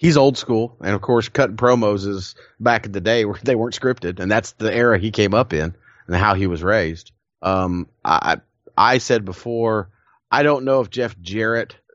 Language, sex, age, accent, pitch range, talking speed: English, male, 30-49, American, 100-125 Hz, 205 wpm